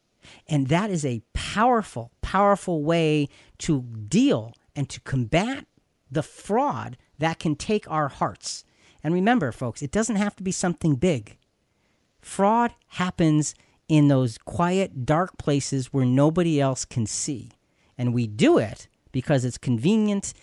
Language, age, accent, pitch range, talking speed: English, 40-59, American, 125-180 Hz, 140 wpm